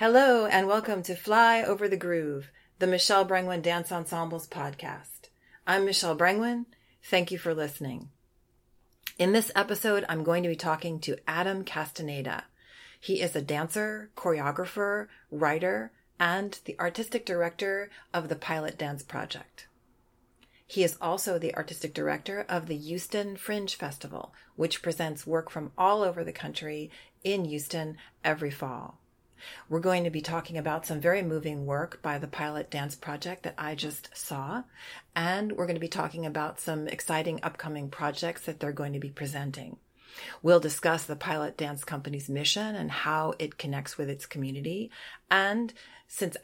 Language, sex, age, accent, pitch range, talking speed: English, female, 40-59, American, 150-185 Hz, 160 wpm